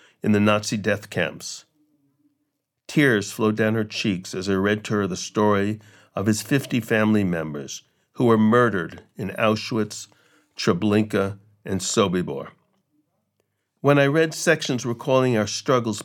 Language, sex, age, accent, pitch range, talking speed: English, male, 50-69, American, 105-130 Hz, 140 wpm